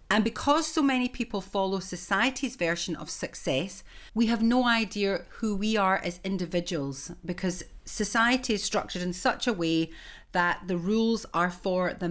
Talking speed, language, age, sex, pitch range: 165 wpm, English, 40-59, female, 180-235 Hz